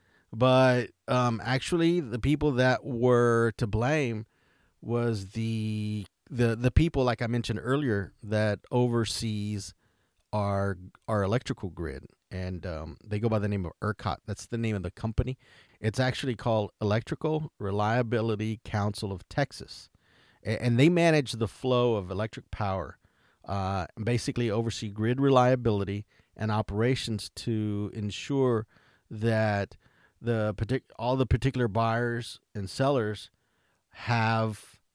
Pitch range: 100-125 Hz